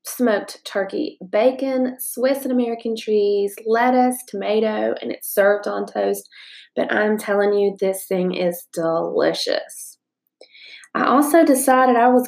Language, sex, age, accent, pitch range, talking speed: English, female, 20-39, American, 200-250 Hz, 130 wpm